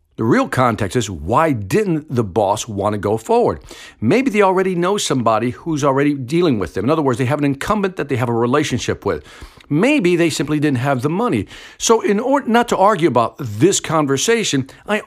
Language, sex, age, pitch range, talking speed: English, male, 50-69, 125-200 Hz, 205 wpm